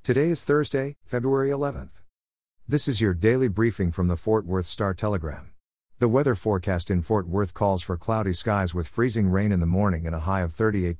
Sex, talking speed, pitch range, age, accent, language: male, 195 wpm, 90-115 Hz, 50-69, American, English